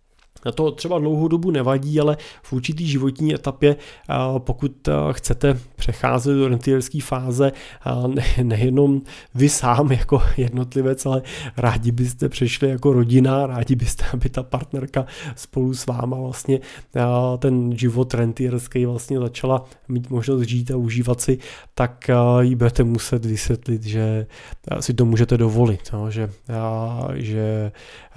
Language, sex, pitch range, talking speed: Czech, male, 120-135 Hz, 125 wpm